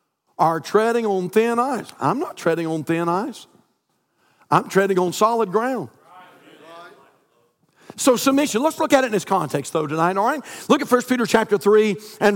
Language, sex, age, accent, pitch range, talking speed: English, male, 50-69, American, 200-235 Hz, 175 wpm